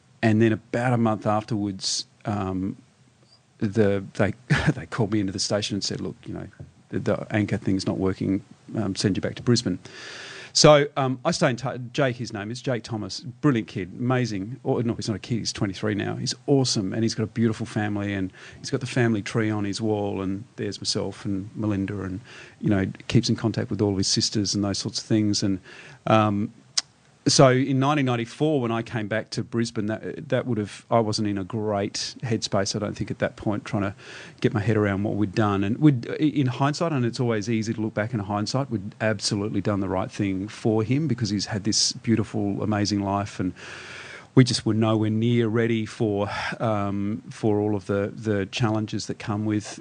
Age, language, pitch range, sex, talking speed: 40-59, English, 105-120 Hz, male, 210 wpm